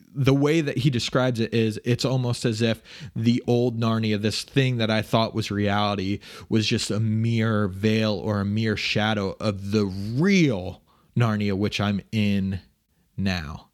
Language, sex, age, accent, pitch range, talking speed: English, male, 30-49, American, 105-125 Hz, 165 wpm